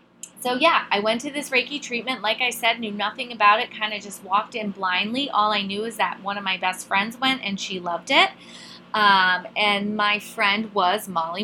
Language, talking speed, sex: English, 220 wpm, female